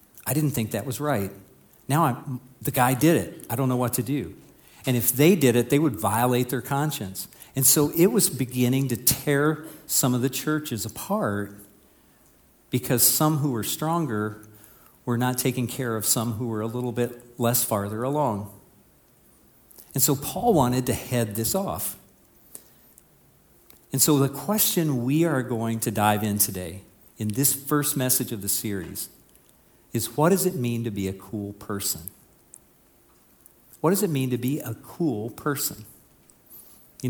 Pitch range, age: 110-140 Hz, 50-69